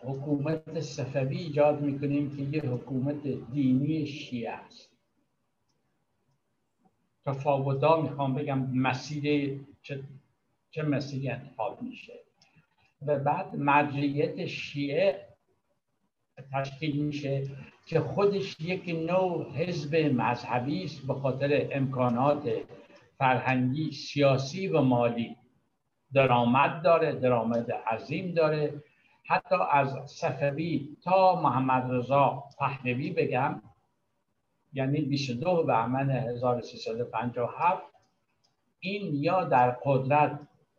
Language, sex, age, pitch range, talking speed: Persian, male, 60-79, 130-155 Hz, 90 wpm